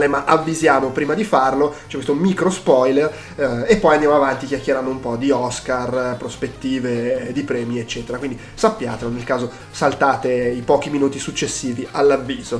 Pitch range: 140-190 Hz